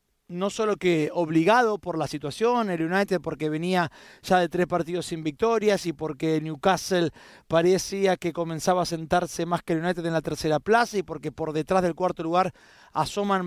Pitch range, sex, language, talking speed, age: 170-210 Hz, male, Spanish, 185 wpm, 30-49